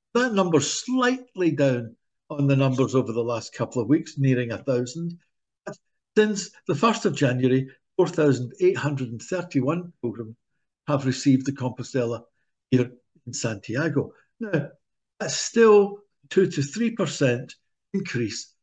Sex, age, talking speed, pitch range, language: male, 60-79, 140 wpm, 130-170 Hz, English